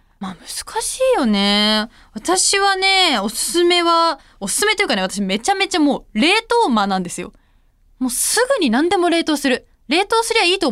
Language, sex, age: Japanese, female, 20-39